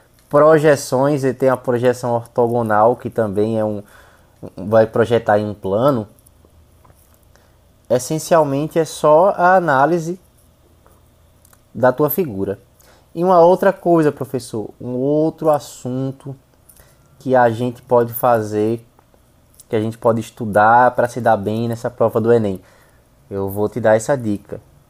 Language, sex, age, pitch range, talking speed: Portuguese, male, 20-39, 105-135 Hz, 135 wpm